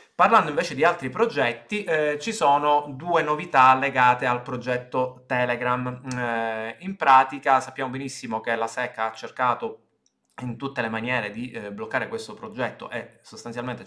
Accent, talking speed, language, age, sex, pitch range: native, 150 wpm, Italian, 20-39, male, 110-130 Hz